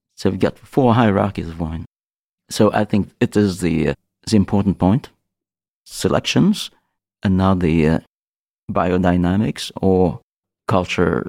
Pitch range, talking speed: 85-105 Hz, 135 wpm